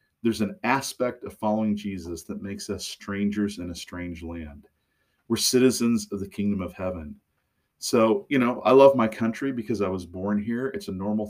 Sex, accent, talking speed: male, American, 190 wpm